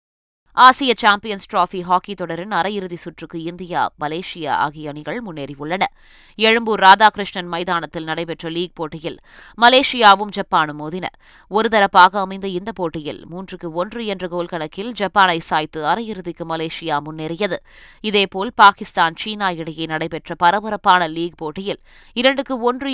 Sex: female